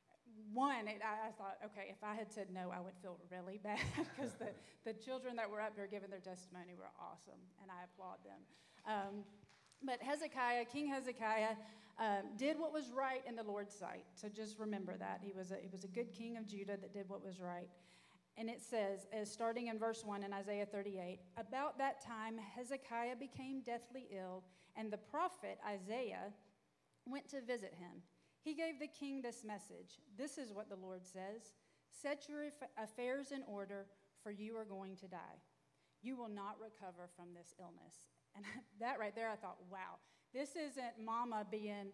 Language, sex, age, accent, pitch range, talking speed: English, female, 30-49, American, 200-250 Hz, 190 wpm